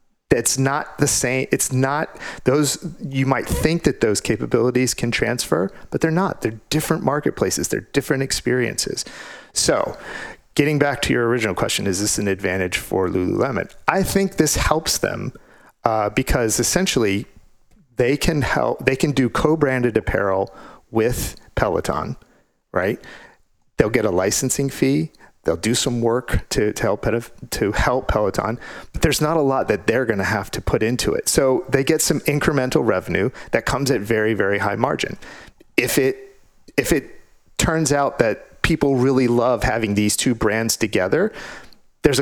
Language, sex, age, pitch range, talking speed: English, male, 40-59, 110-145 Hz, 160 wpm